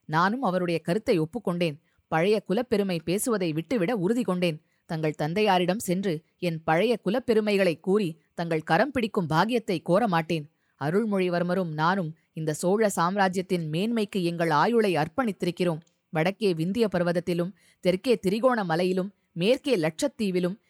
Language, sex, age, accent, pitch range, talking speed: Tamil, female, 20-39, native, 165-215 Hz, 115 wpm